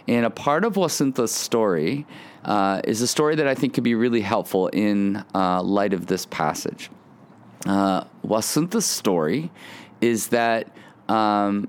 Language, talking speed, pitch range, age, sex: English, 150 wpm, 100-125 Hz, 30-49, male